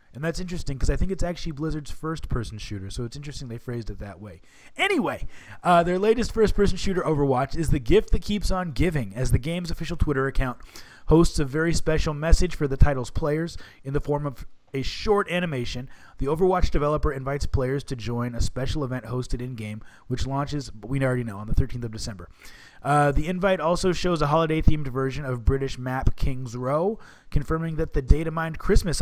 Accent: American